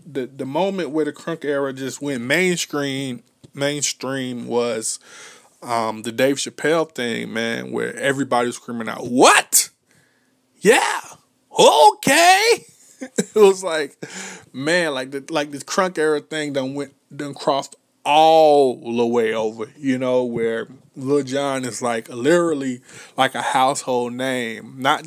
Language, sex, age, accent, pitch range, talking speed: English, male, 20-39, American, 125-155 Hz, 140 wpm